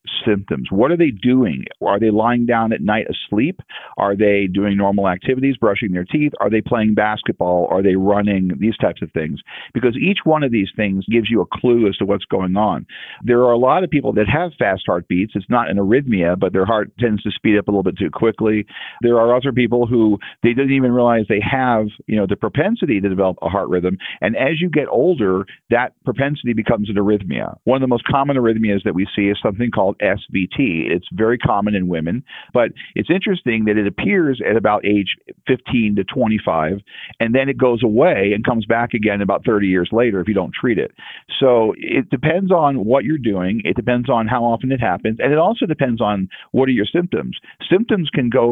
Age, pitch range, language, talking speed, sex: 40-59, 100-125 Hz, English, 220 wpm, male